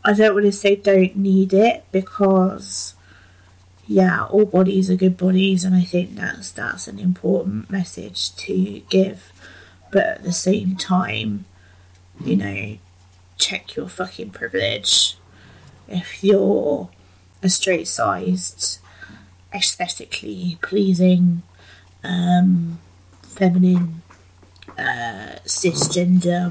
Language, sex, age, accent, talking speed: English, female, 30-49, British, 105 wpm